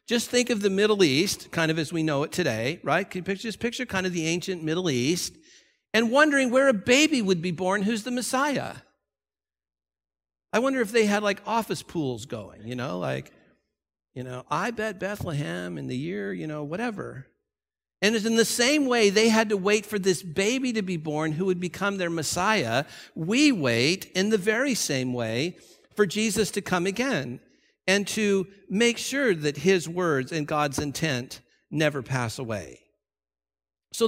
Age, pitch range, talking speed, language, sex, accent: 50-69, 145-210 Hz, 185 wpm, English, male, American